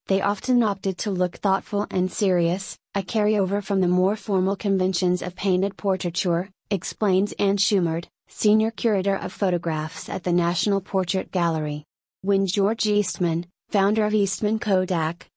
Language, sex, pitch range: English, female, 180-205 Hz